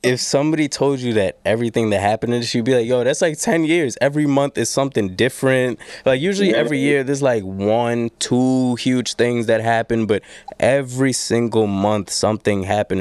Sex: male